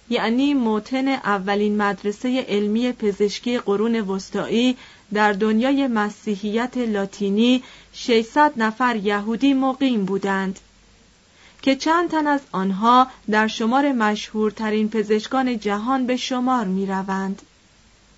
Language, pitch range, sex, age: Persian, 210-255 Hz, female, 30-49